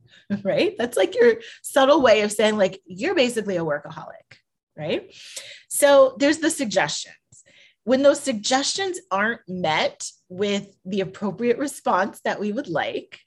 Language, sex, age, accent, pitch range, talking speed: English, female, 30-49, American, 195-290 Hz, 140 wpm